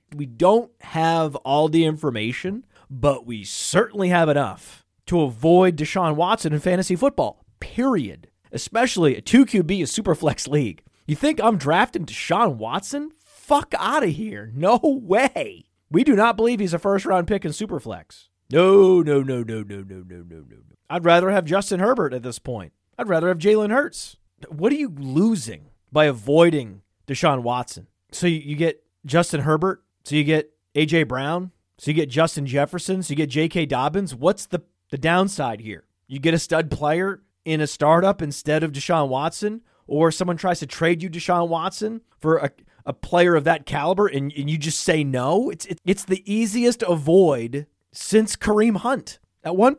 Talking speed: 175 wpm